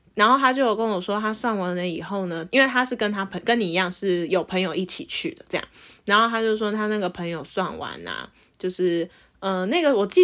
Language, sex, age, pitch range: Chinese, female, 20-39, 195-275 Hz